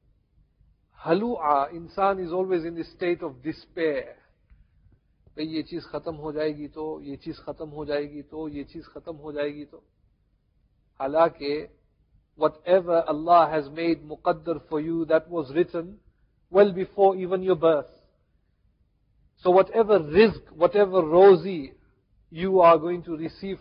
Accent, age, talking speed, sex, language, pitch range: Indian, 50-69, 90 wpm, male, English, 160-195 Hz